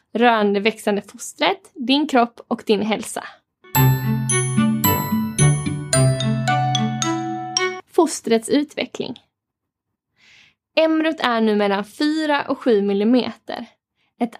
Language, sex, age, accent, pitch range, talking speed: English, female, 10-29, Swedish, 220-275 Hz, 70 wpm